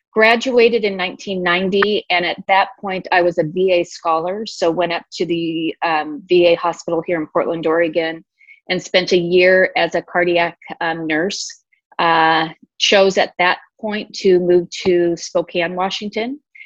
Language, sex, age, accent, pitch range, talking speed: English, female, 30-49, American, 170-195 Hz, 155 wpm